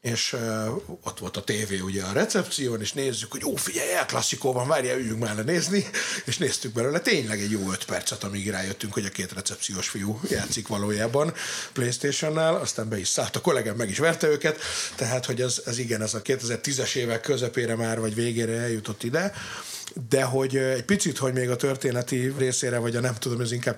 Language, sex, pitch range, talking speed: Hungarian, male, 105-130 Hz, 200 wpm